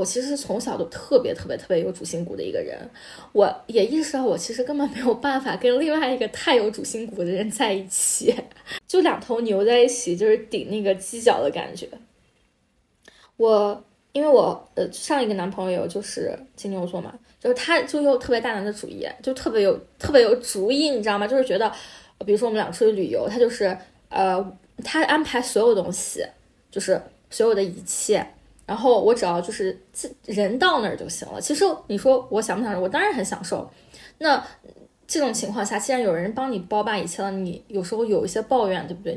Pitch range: 195-265 Hz